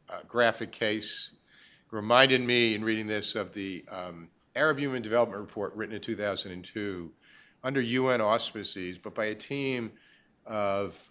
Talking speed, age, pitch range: 150 wpm, 50-69, 100-120 Hz